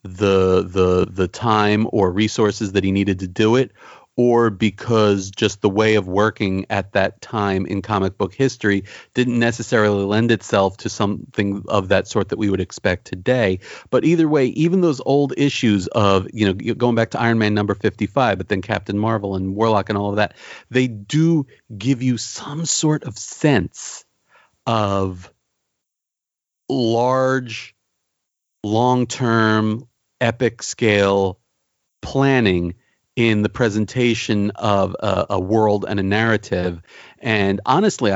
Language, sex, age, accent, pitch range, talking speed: English, male, 40-59, American, 100-120 Hz, 145 wpm